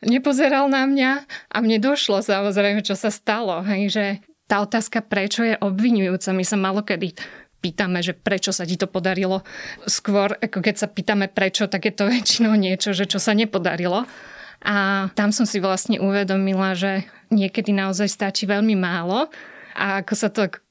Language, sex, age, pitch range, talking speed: Slovak, female, 20-39, 195-215 Hz, 170 wpm